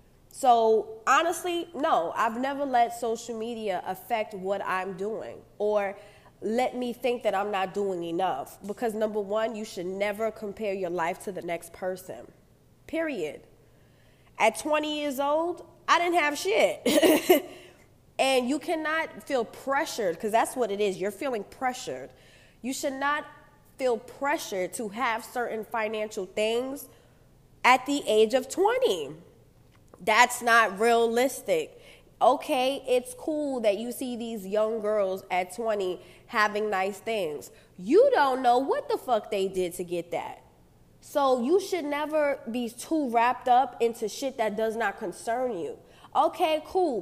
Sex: female